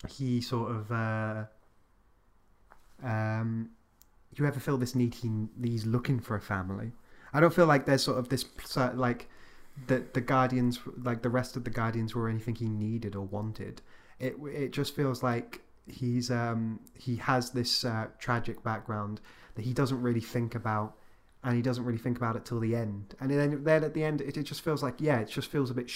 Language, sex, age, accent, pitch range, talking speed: English, male, 20-39, British, 110-130 Hz, 200 wpm